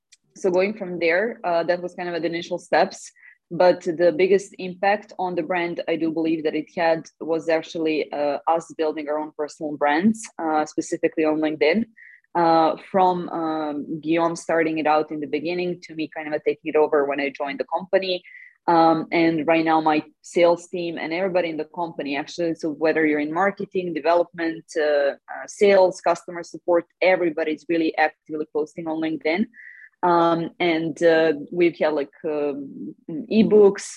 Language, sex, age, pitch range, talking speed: English, female, 20-39, 155-175 Hz, 175 wpm